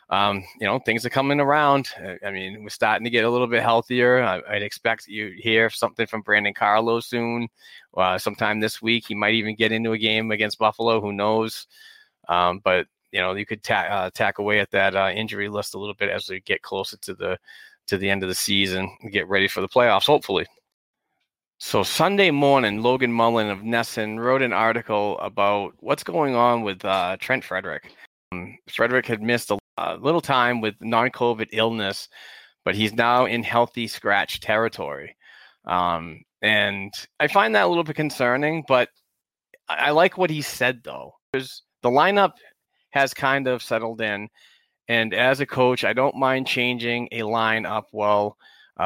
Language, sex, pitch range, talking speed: English, male, 105-125 Hz, 185 wpm